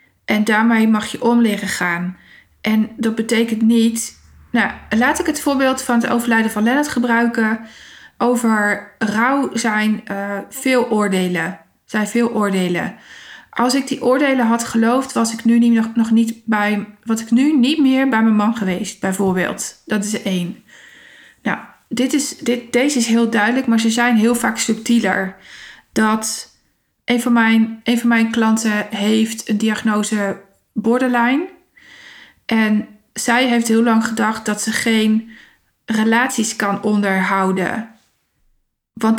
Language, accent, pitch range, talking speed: Dutch, Dutch, 220-255 Hz, 130 wpm